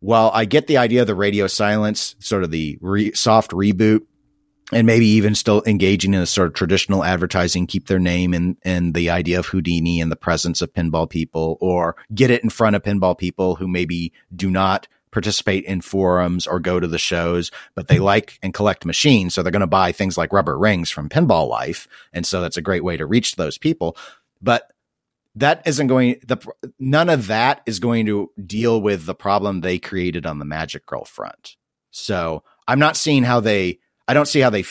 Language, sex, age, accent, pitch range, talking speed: English, male, 40-59, American, 85-110 Hz, 210 wpm